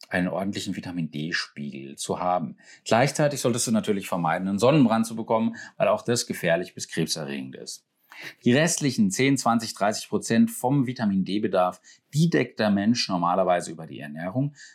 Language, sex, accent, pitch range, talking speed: German, male, German, 90-125 Hz, 150 wpm